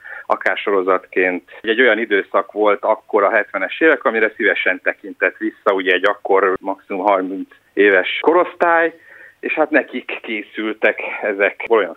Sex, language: male, Hungarian